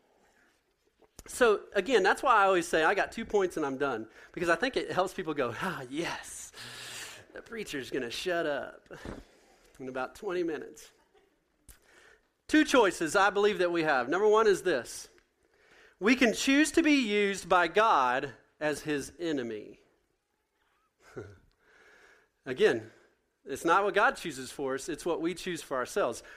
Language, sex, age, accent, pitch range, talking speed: English, male, 40-59, American, 175-275 Hz, 155 wpm